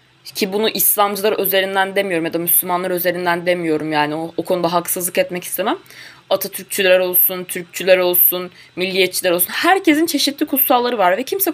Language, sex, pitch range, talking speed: Turkish, female, 190-280 Hz, 150 wpm